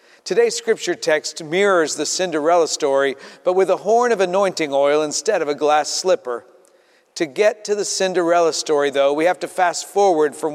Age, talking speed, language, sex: 50-69, 180 wpm, English, male